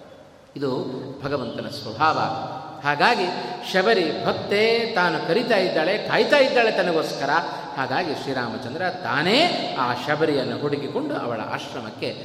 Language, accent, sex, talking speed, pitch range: Kannada, native, male, 100 wpm, 170-260 Hz